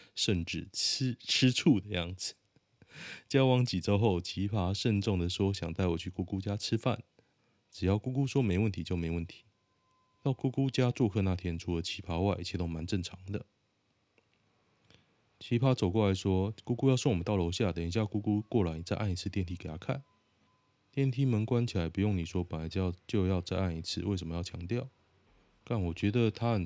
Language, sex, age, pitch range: Chinese, male, 20-39, 90-120 Hz